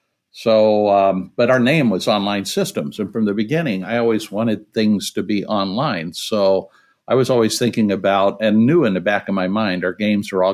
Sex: male